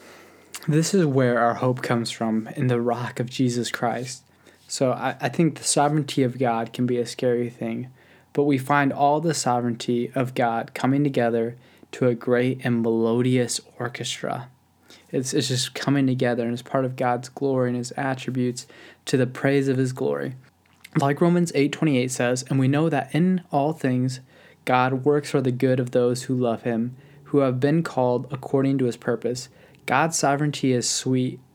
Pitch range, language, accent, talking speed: 125-140 Hz, English, American, 180 wpm